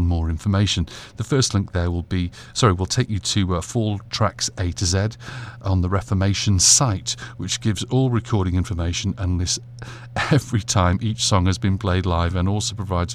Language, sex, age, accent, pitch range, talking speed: English, male, 40-59, British, 90-115 Hz, 185 wpm